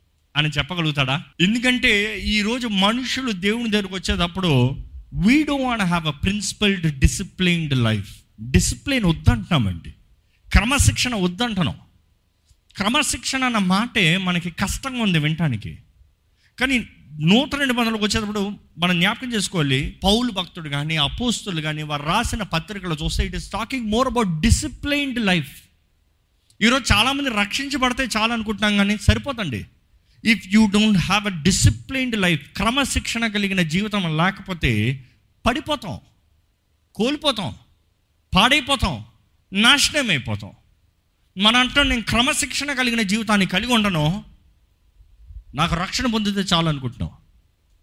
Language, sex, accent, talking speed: Telugu, male, native, 105 wpm